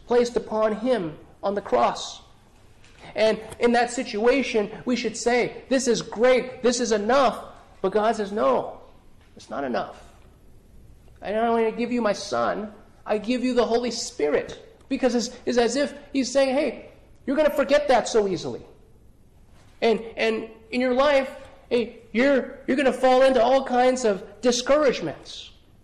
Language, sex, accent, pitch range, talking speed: English, male, American, 195-255 Hz, 165 wpm